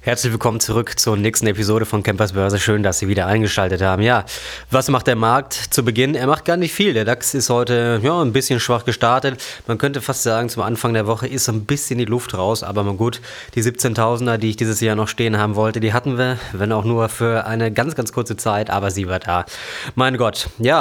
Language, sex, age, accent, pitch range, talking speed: German, male, 20-39, German, 110-130 Hz, 240 wpm